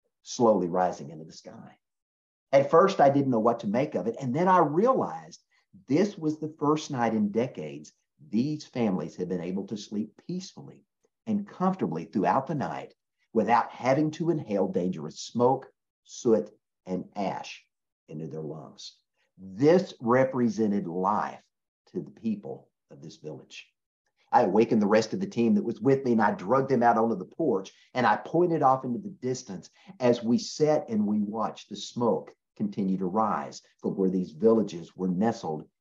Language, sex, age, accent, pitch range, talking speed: English, male, 50-69, American, 105-150 Hz, 175 wpm